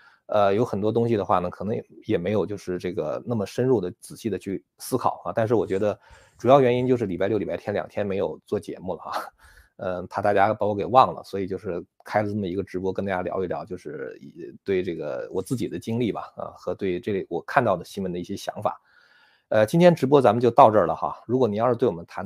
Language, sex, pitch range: Chinese, male, 95-125 Hz